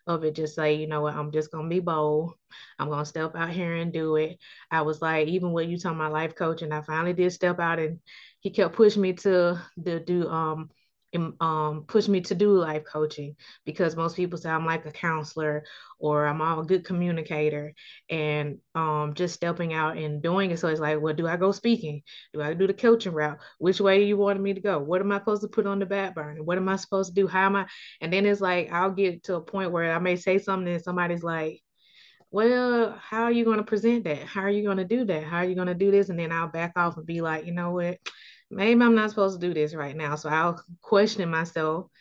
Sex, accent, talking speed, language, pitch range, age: female, American, 255 wpm, English, 160-195 Hz, 20-39